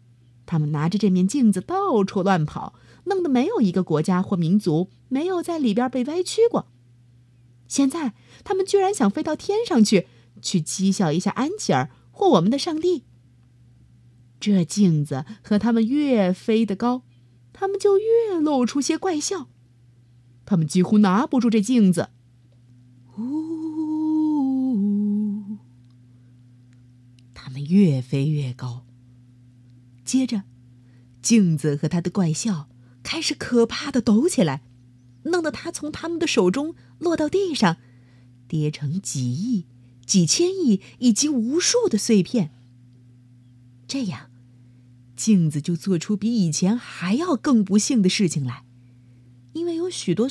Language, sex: Chinese, female